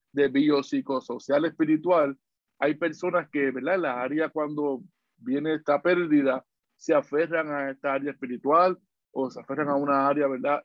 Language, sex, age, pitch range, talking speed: Spanish, male, 50-69, 135-155 Hz, 150 wpm